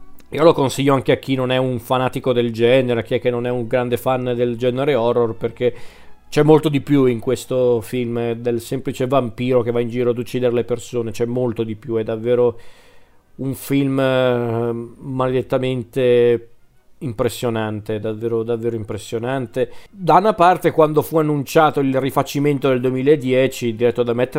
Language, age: Italian, 40-59